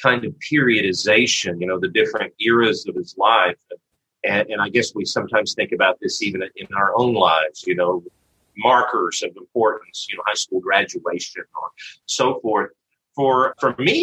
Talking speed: 175 wpm